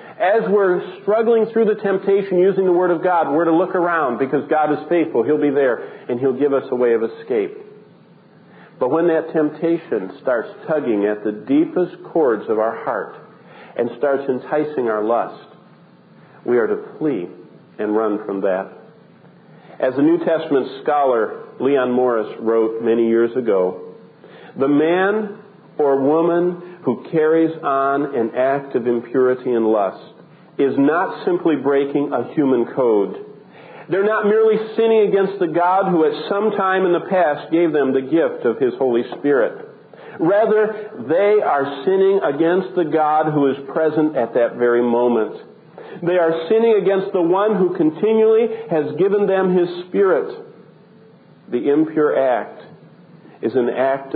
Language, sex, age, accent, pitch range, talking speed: English, male, 50-69, American, 140-205 Hz, 155 wpm